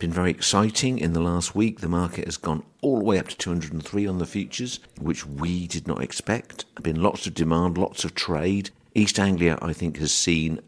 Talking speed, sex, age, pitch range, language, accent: 215 wpm, male, 50-69, 75-90 Hz, English, British